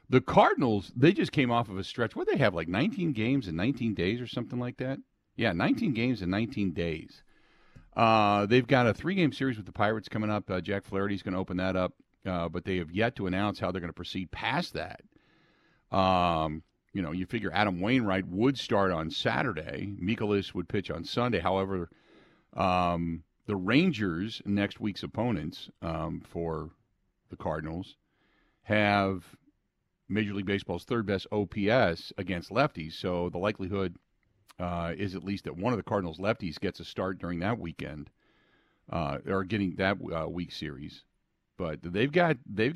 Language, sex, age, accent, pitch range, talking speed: English, male, 50-69, American, 90-115 Hz, 180 wpm